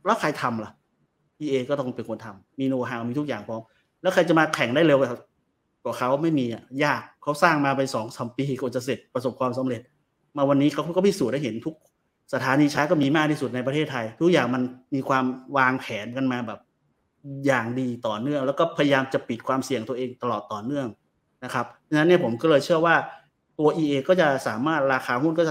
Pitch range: 120-145 Hz